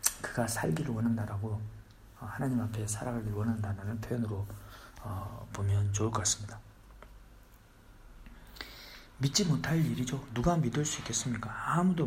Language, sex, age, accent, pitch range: Korean, male, 40-59, native, 105-125 Hz